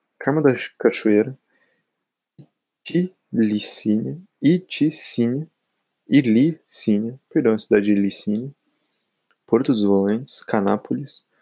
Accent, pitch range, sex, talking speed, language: Brazilian, 110-135 Hz, male, 75 wpm, Portuguese